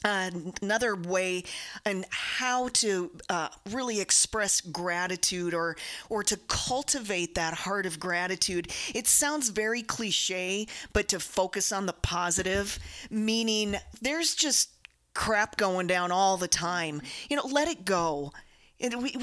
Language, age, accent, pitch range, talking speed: English, 40-59, American, 180-235 Hz, 135 wpm